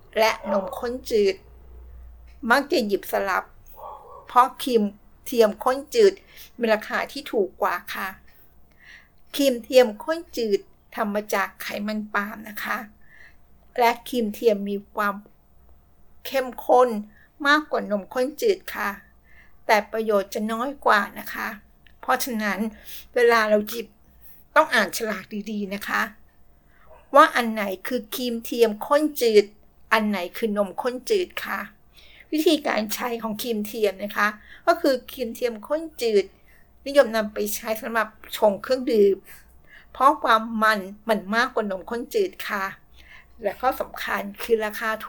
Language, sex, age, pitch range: Thai, female, 60-79, 210-260 Hz